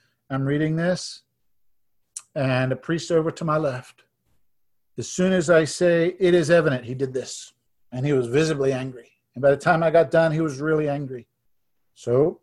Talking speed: 185 wpm